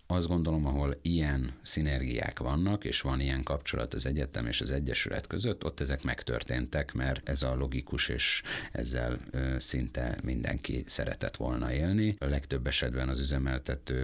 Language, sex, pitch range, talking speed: Hungarian, male, 65-80 Hz, 150 wpm